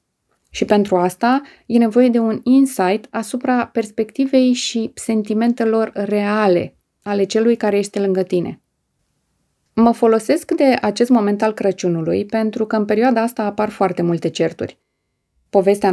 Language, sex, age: Romanian, female, 20-39